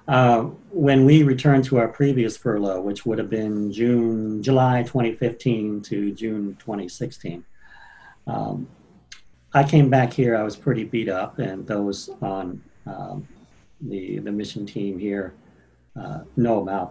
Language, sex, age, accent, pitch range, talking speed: English, male, 50-69, American, 100-125 Hz, 140 wpm